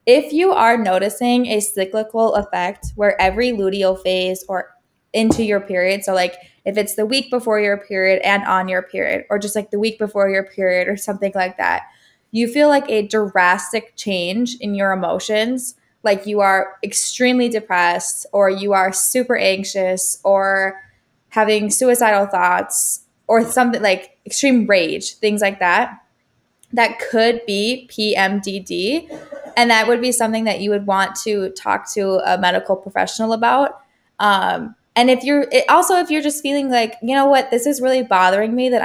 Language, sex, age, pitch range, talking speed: English, female, 20-39, 195-240 Hz, 170 wpm